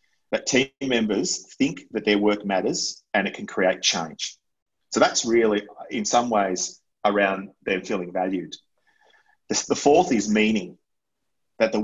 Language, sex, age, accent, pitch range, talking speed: English, male, 30-49, Australian, 100-120 Hz, 145 wpm